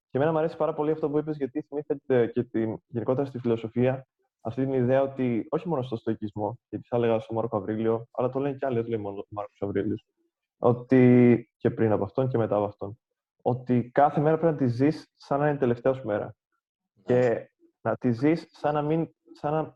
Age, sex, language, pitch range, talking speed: 20-39, male, Greek, 110-145 Hz, 205 wpm